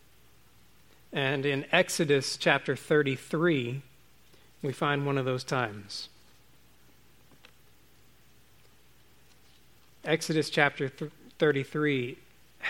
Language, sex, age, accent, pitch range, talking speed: English, male, 40-59, American, 120-150 Hz, 70 wpm